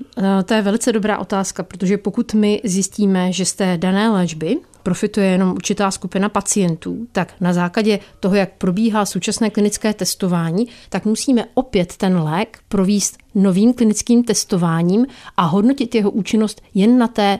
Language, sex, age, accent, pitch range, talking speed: Czech, female, 40-59, native, 185-210 Hz, 150 wpm